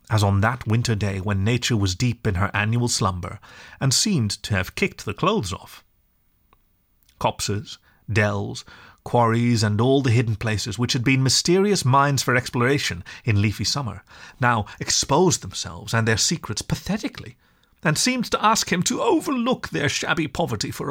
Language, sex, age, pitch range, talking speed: English, male, 30-49, 105-140 Hz, 165 wpm